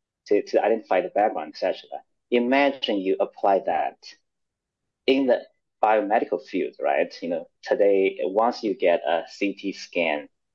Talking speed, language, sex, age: 140 wpm, English, male, 30-49